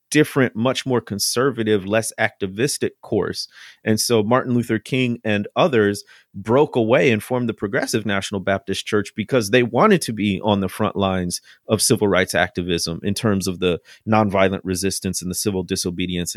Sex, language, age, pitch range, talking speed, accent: male, English, 30-49, 95-120 Hz, 170 wpm, American